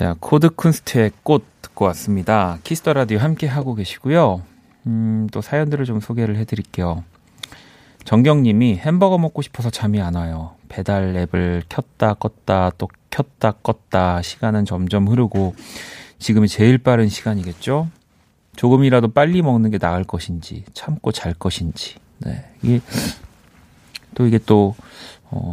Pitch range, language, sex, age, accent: 95-125 Hz, Korean, male, 30-49, native